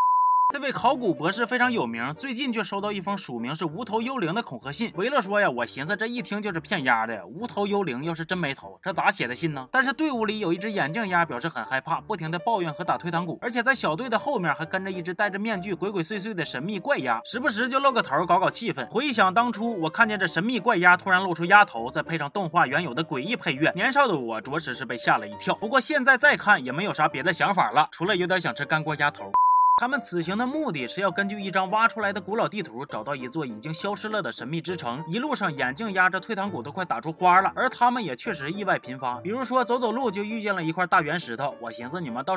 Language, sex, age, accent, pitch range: Chinese, male, 30-49, native, 165-230 Hz